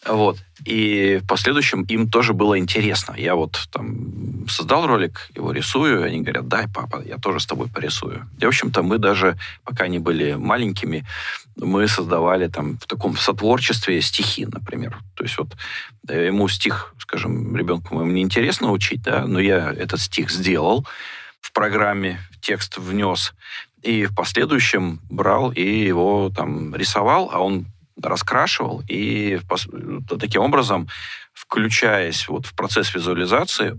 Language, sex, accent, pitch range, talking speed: Russian, male, native, 90-115 Hz, 145 wpm